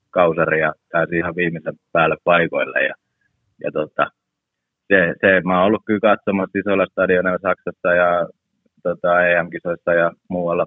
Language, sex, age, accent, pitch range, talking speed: Finnish, male, 30-49, native, 85-100 Hz, 140 wpm